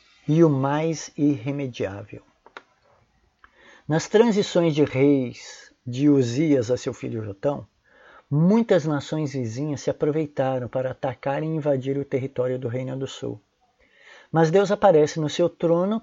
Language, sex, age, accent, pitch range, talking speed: Portuguese, male, 60-79, Brazilian, 130-165 Hz, 130 wpm